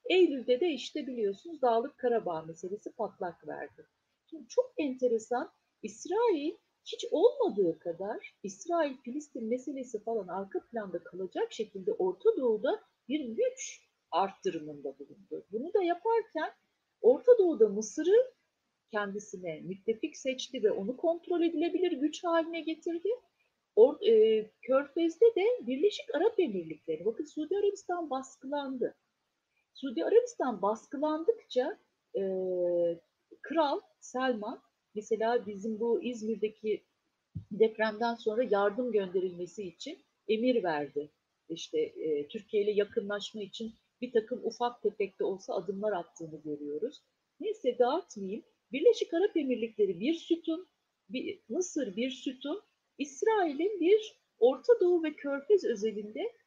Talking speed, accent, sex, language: 110 wpm, native, female, Turkish